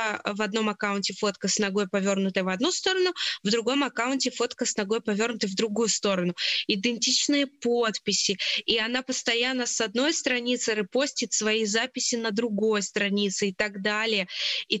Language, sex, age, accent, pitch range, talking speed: Russian, female, 20-39, native, 215-255 Hz, 155 wpm